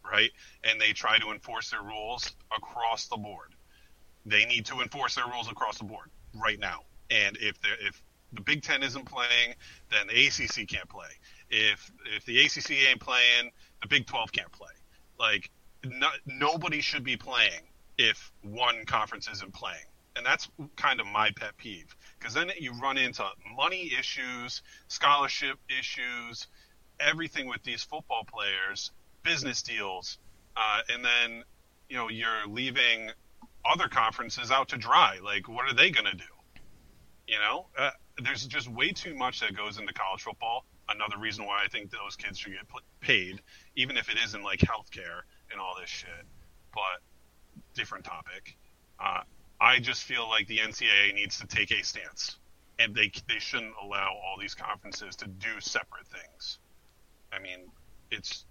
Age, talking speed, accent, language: 30-49, 165 wpm, American, English